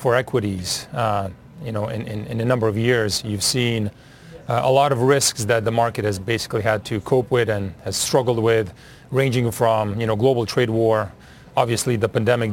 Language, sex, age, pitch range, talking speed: English, male, 30-49, 115-140 Hz, 200 wpm